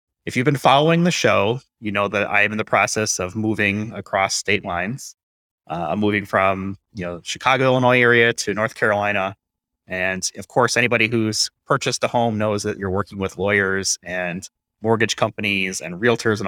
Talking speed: 180 wpm